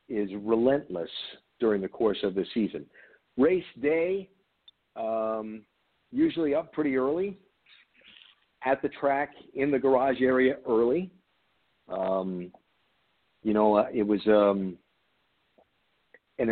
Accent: American